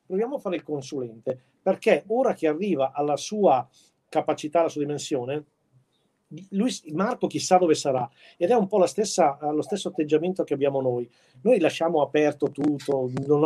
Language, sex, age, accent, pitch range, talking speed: Italian, male, 50-69, native, 135-165 Hz, 150 wpm